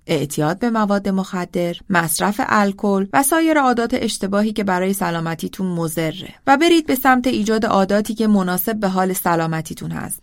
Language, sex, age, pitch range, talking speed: Persian, female, 30-49, 180-235 Hz, 155 wpm